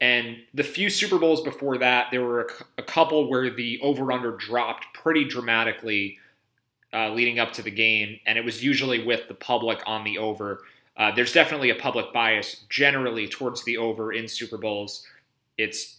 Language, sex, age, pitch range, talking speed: English, male, 30-49, 110-130 Hz, 180 wpm